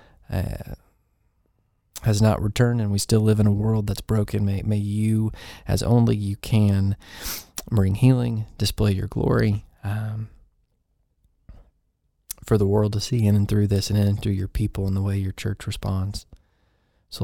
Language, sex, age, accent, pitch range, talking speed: English, male, 20-39, American, 100-110 Hz, 165 wpm